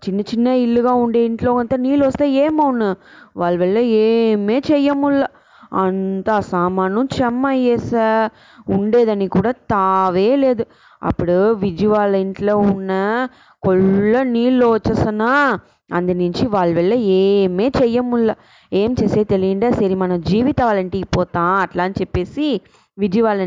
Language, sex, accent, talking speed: English, female, Indian, 100 wpm